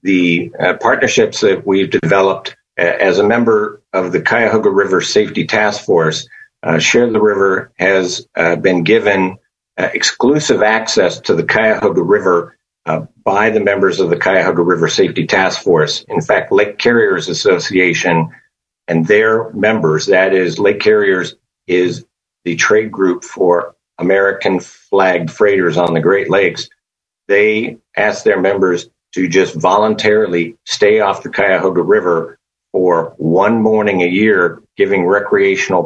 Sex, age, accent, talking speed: male, 50-69, American, 145 wpm